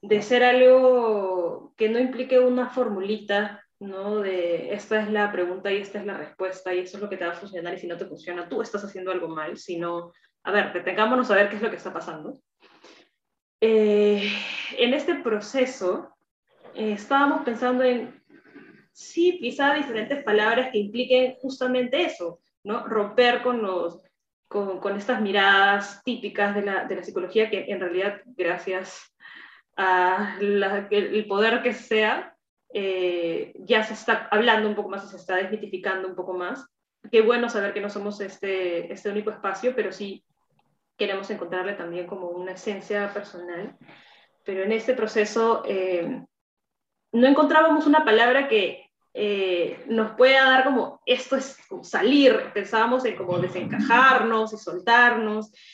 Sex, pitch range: female, 190-240 Hz